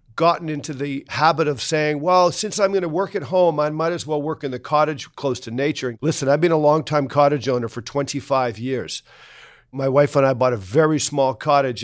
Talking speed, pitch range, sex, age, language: 225 wpm, 130-160 Hz, male, 50-69, English